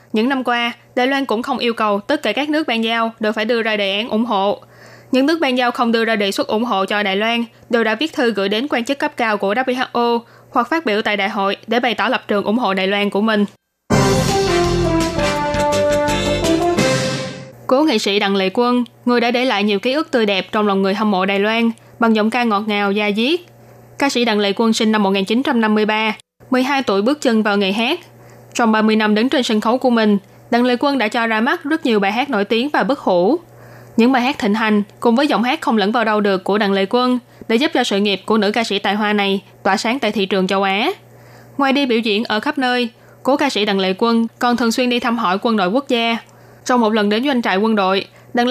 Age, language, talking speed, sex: 20-39, Vietnamese, 250 wpm, female